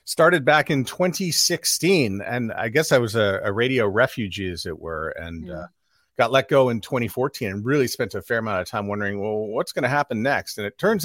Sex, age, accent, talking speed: male, 40-59, American, 225 wpm